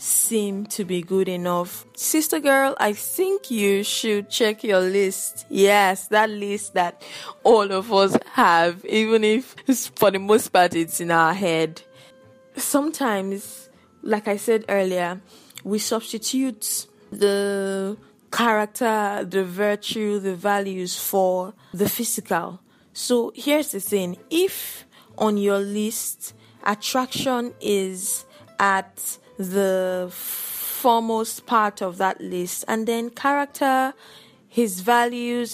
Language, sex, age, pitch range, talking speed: English, female, 10-29, 195-235 Hz, 120 wpm